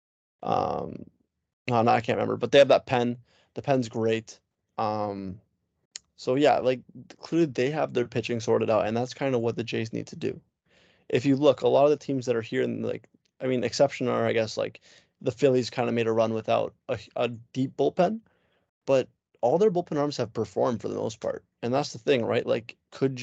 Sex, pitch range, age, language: male, 115-130 Hz, 20-39, English